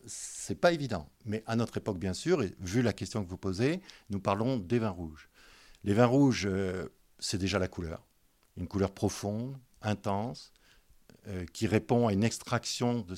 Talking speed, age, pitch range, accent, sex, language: 180 wpm, 50-69, 95-130 Hz, French, male, French